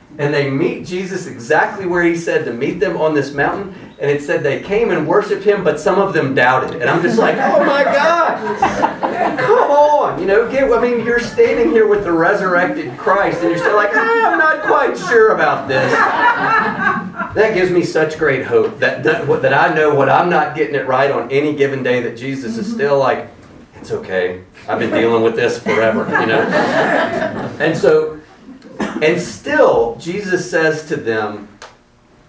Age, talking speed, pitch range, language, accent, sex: 40-59, 190 wpm, 140-225 Hz, English, American, male